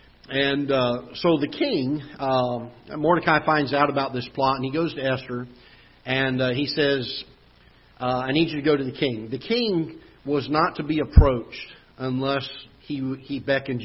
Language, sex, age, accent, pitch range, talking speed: English, male, 50-69, American, 125-155 Hz, 180 wpm